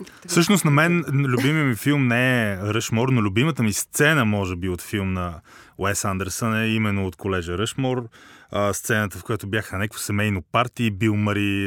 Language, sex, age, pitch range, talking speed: Bulgarian, male, 30-49, 100-135 Hz, 185 wpm